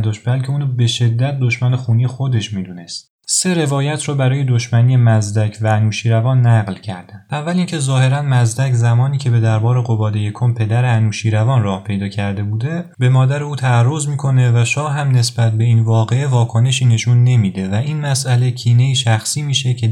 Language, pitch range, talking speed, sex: Persian, 110-130 Hz, 170 wpm, male